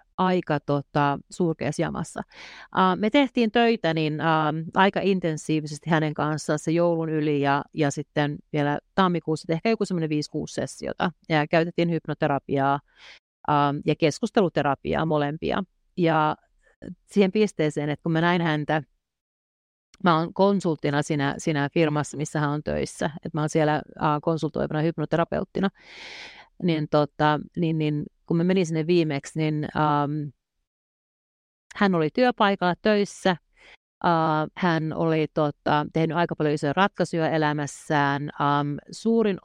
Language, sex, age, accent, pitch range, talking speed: Finnish, female, 40-59, native, 145-175 Hz, 120 wpm